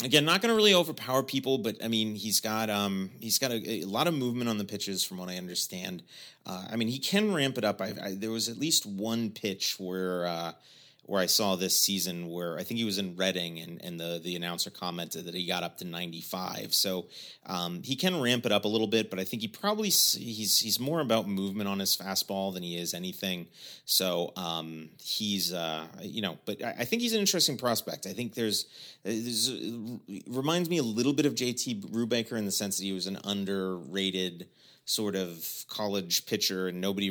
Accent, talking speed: American, 225 wpm